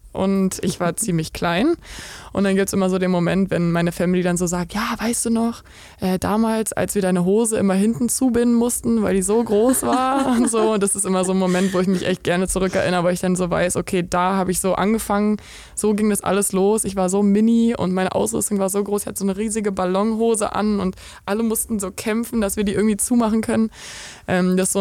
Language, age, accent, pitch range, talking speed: German, 20-39, German, 180-210 Hz, 245 wpm